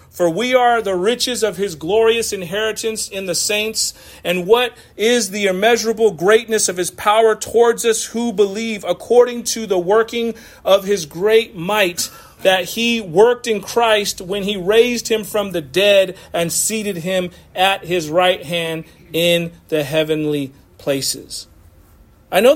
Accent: American